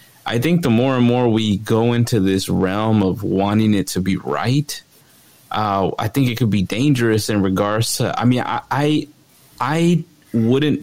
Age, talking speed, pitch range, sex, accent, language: 20-39, 185 wpm, 100-130 Hz, male, American, English